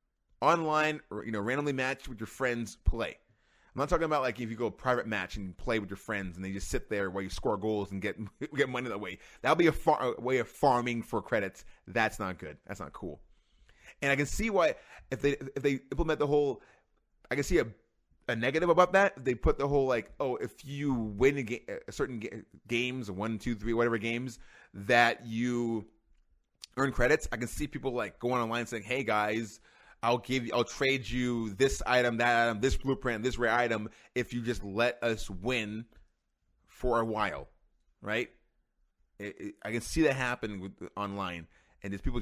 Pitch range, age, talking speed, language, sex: 105-130 Hz, 20-39, 215 wpm, English, male